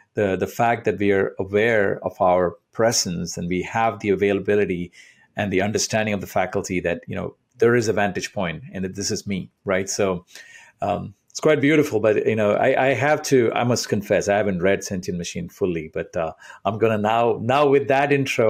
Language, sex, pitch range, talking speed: English, male, 95-120 Hz, 215 wpm